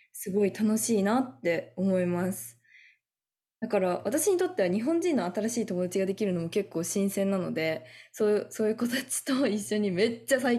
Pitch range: 175-240 Hz